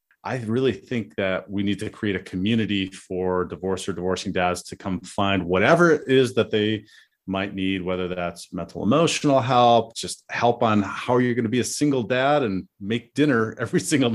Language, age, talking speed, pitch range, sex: English, 30-49, 195 wpm, 95-120 Hz, male